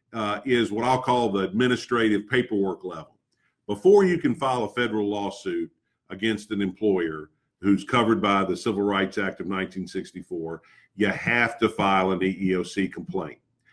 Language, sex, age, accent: English, male, 50-69, American